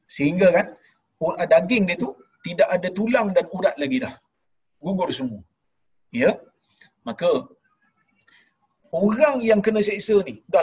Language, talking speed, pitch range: Malayalam, 125 wpm, 145-220 Hz